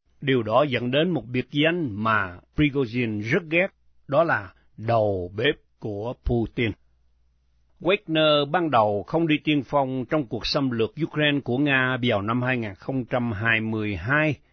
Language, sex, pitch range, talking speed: Vietnamese, male, 110-150 Hz, 140 wpm